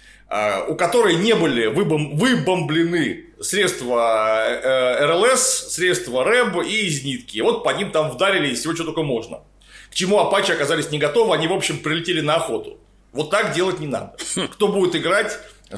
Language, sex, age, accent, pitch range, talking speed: Russian, male, 30-49, native, 145-210 Hz, 155 wpm